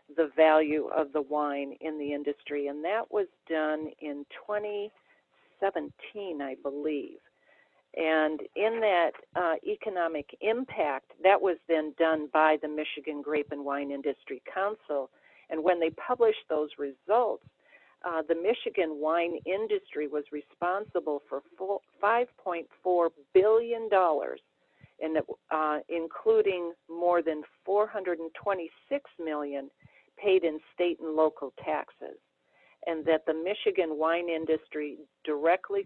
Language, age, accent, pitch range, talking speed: English, 50-69, American, 150-185 Hz, 120 wpm